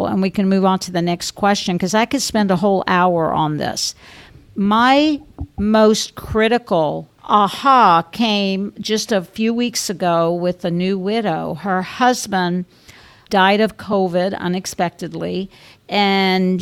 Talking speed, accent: 140 wpm, American